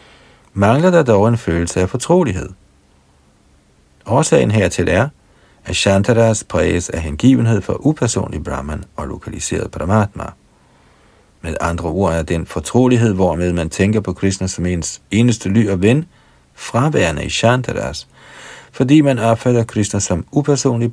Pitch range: 85-110 Hz